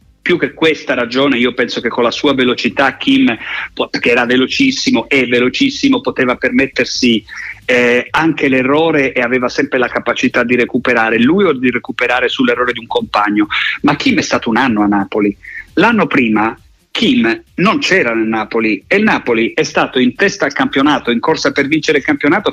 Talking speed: 180 wpm